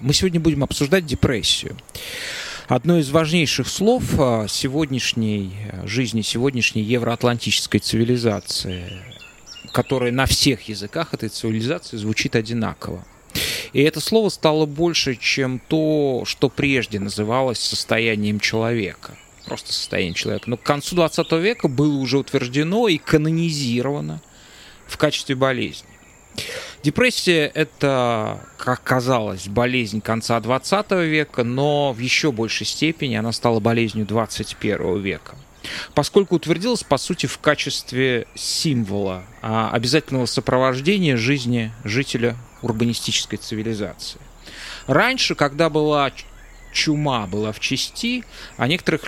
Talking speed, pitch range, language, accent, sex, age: 110 wpm, 110-150 Hz, Russian, native, male, 30-49